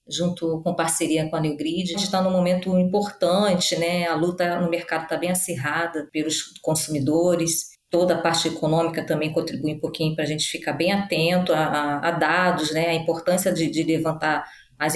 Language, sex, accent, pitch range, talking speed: Portuguese, female, Brazilian, 160-195 Hz, 190 wpm